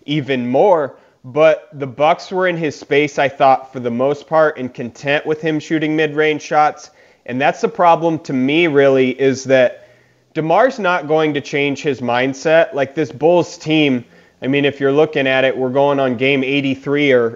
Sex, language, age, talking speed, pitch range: male, English, 30-49, 190 wpm, 130-155 Hz